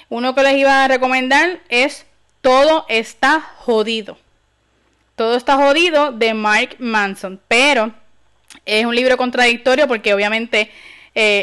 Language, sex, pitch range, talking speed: Spanish, female, 215-255 Hz, 125 wpm